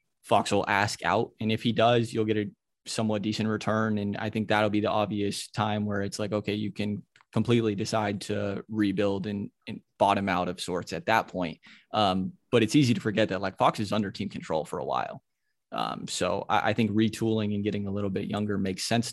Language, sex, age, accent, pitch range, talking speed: English, male, 20-39, American, 95-110 Hz, 225 wpm